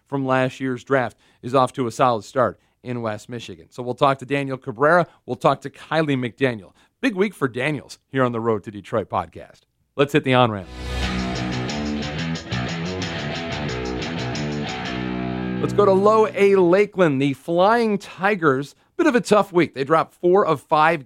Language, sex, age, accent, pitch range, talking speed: English, male, 40-59, American, 125-165 Hz, 165 wpm